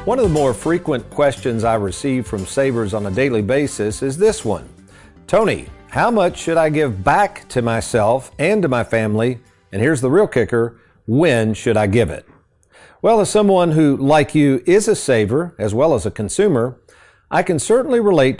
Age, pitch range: 50-69, 115-155 Hz